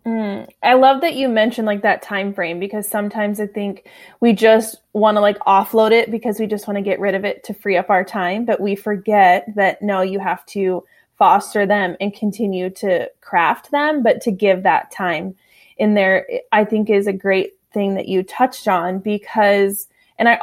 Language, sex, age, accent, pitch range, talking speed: English, female, 20-39, American, 200-230 Hz, 205 wpm